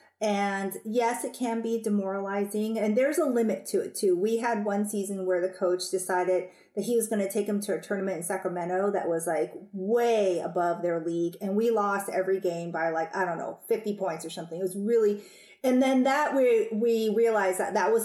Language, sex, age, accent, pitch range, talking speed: English, female, 30-49, American, 190-245 Hz, 220 wpm